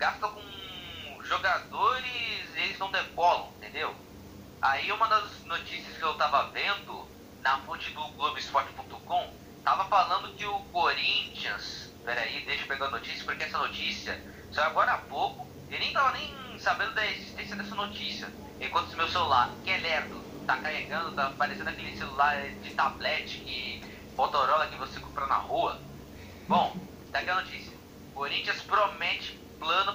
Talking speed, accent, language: 150 wpm, Brazilian, Portuguese